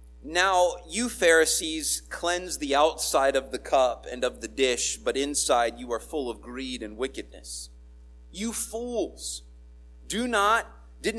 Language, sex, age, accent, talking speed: English, male, 40-59, American, 135 wpm